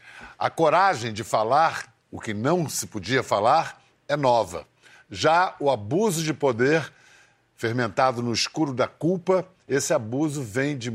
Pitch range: 120-160 Hz